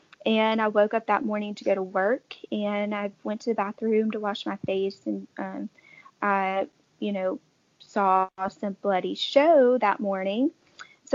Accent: American